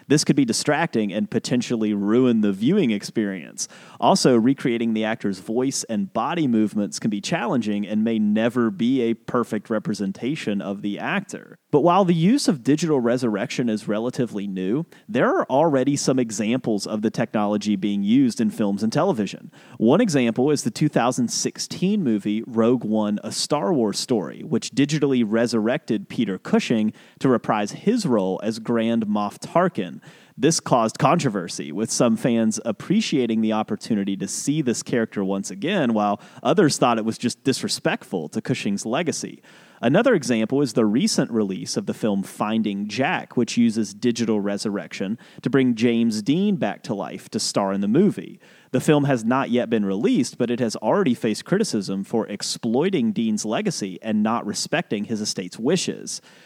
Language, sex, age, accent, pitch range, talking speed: English, male, 30-49, American, 105-140 Hz, 165 wpm